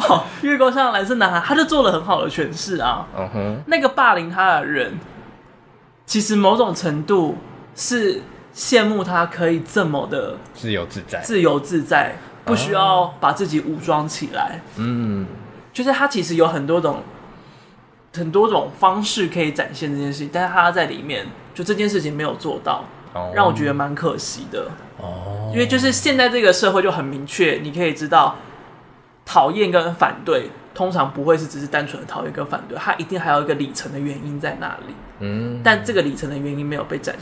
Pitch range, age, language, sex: 145-195 Hz, 20-39, Chinese, male